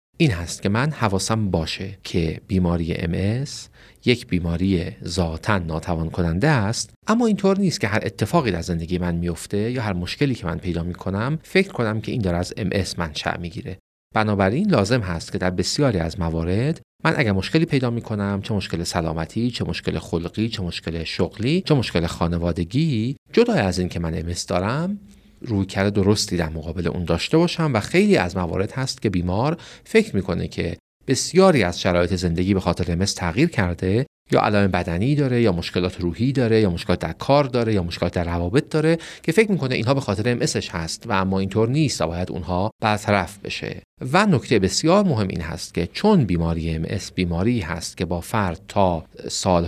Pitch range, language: 85-120 Hz, Persian